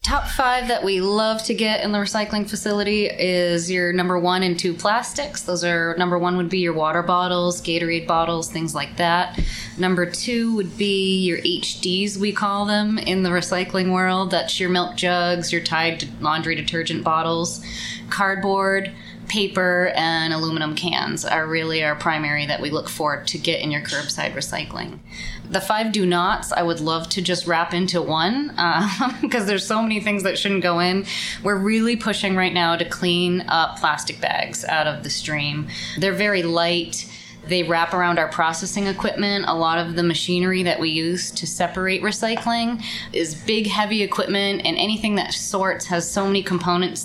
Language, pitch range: English, 165-195 Hz